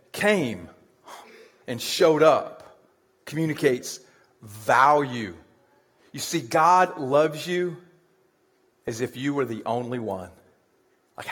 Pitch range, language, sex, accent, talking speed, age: 125-165 Hz, English, male, American, 100 wpm, 40-59